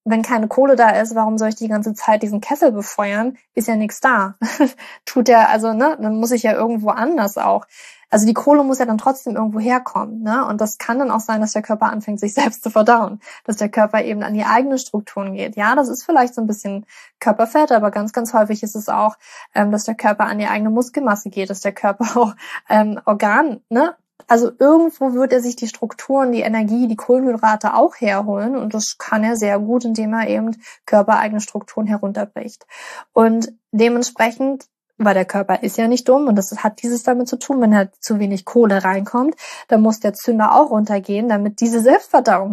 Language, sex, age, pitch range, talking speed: German, female, 20-39, 210-245 Hz, 210 wpm